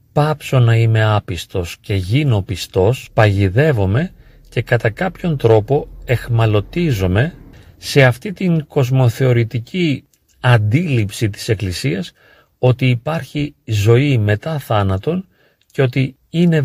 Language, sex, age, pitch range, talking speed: Greek, male, 40-59, 115-160 Hz, 100 wpm